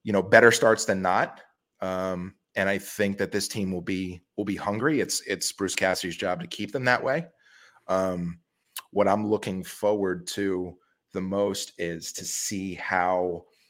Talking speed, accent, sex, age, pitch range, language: 175 wpm, American, male, 30-49, 90-110 Hz, English